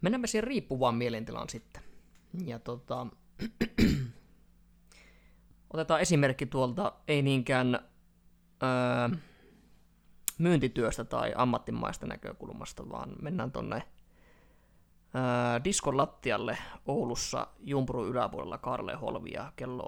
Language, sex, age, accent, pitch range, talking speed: Finnish, male, 20-39, native, 115-140 Hz, 85 wpm